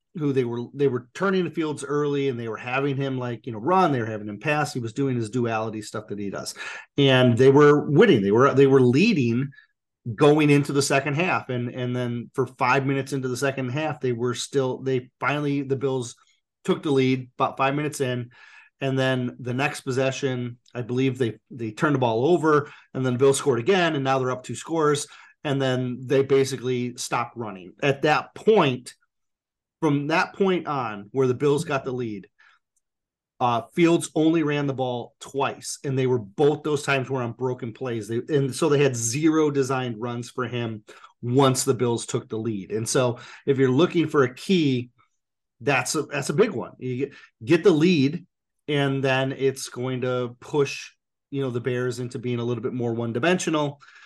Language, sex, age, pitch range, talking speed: English, male, 30-49, 125-145 Hz, 200 wpm